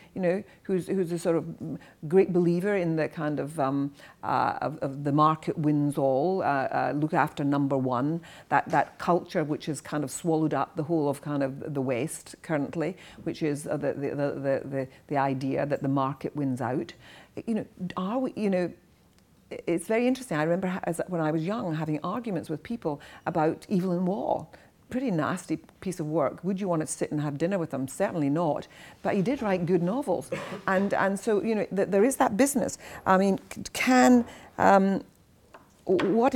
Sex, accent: female, British